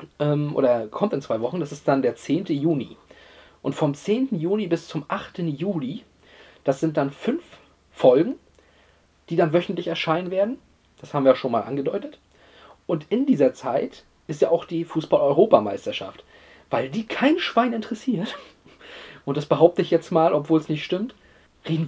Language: German